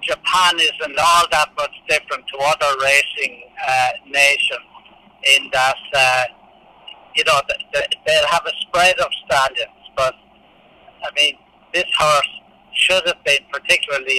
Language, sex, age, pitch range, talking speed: English, male, 60-79, 140-185 Hz, 130 wpm